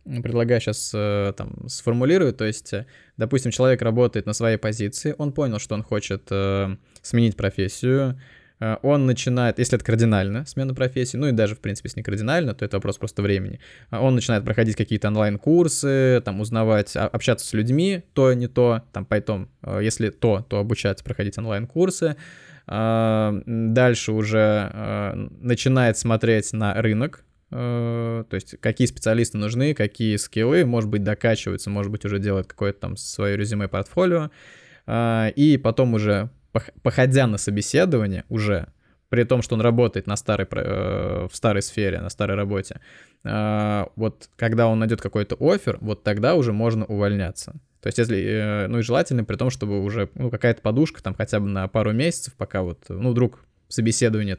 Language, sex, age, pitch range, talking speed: Russian, male, 20-39, 100-125 Hz, 155 wpm